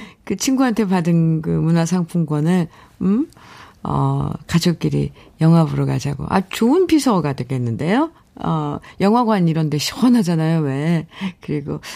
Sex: female